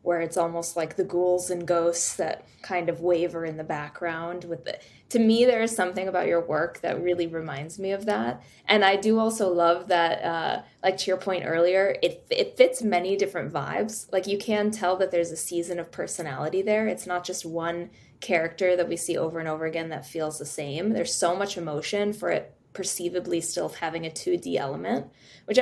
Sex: female